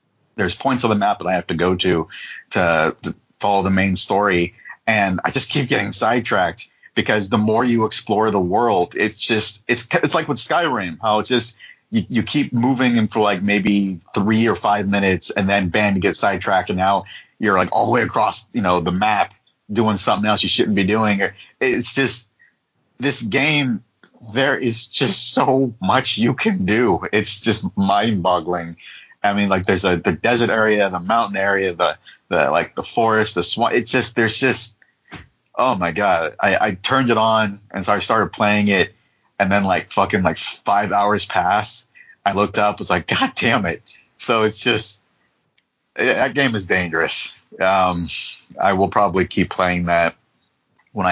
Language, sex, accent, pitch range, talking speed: English, male, American, 95-115 Hz, 190 wpm